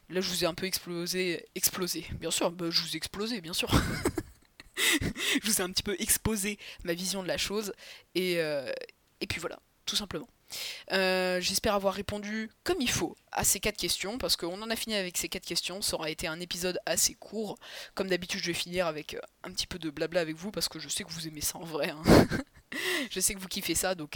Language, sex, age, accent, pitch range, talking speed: French, female, 20-39, French, 165-195 Hz, 235 wpm